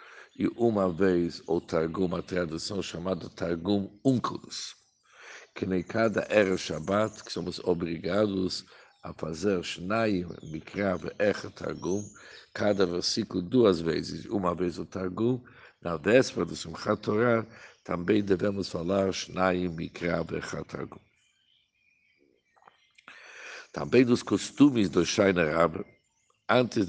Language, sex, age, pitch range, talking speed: Portuguese, male, 60-79, 90-110 Hz, 110 wpm